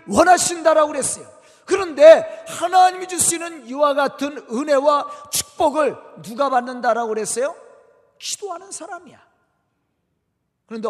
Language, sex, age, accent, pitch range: Korean, male, 40-59, native, 230-325 Hz